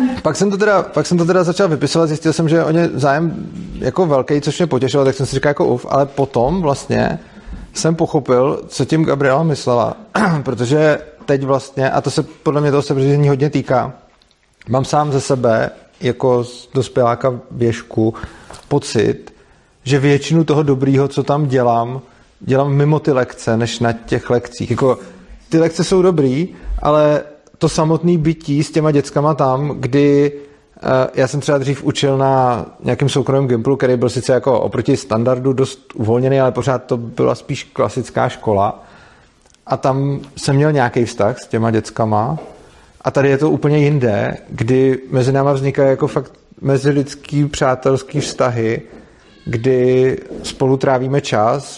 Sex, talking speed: male, 160 wpm